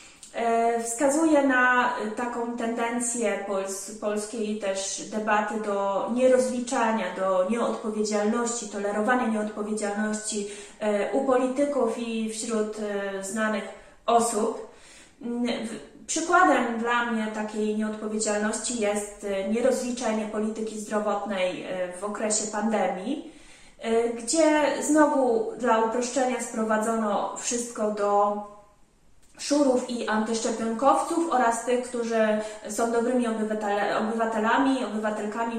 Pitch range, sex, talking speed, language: 205-240 Hz, female, 80 wpm, Polish